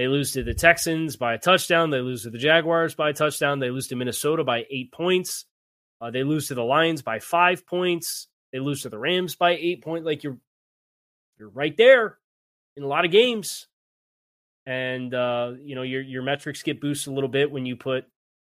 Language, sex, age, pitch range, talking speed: English, male, 20-39, 125-150 Hz, 210 wpm